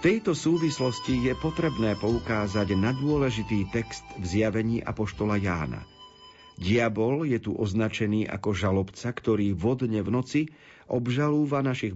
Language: Slovak